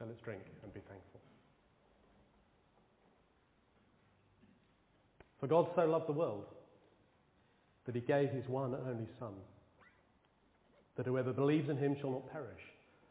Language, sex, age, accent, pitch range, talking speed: English, male, 40-59, British, 100-130 Hz, 130 wpm